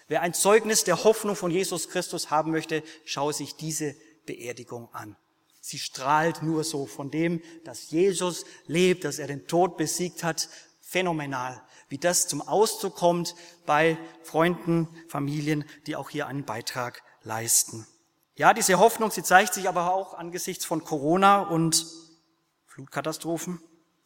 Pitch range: 155-200 Hz